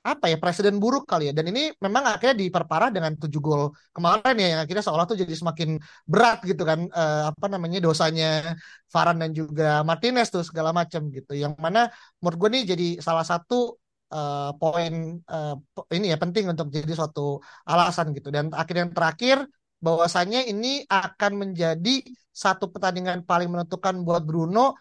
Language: Indonesian